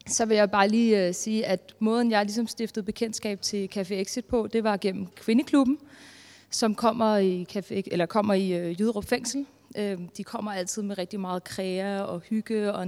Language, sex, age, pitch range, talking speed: Danish, female, 30-49, 200-225 Hz, 190 wpm